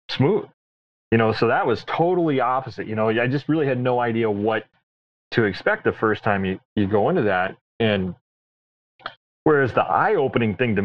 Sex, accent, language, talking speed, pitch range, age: male, American, English, 185 wpm, 95-120 Hz, 30-49